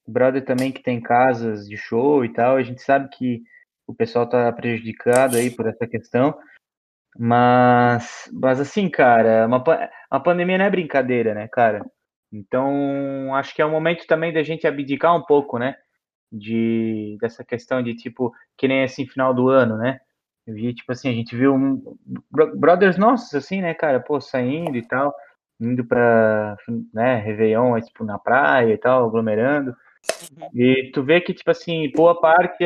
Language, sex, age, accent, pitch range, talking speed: Portuguese, male, 20-39, Brazilian, 120-160 Hz, 170 wpm